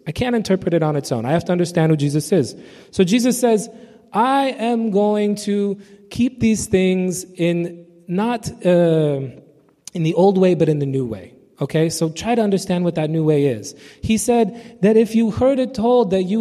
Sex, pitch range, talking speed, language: male, 160-215 Hz, 205 wpm, English